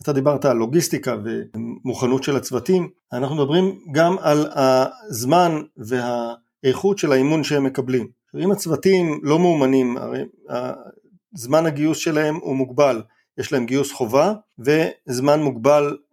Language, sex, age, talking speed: Hebrew, male, 40-59, 120 wpm